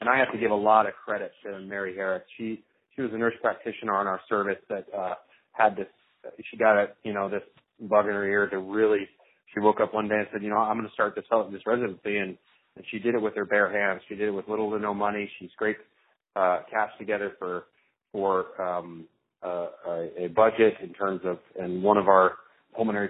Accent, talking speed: American, 235 wpm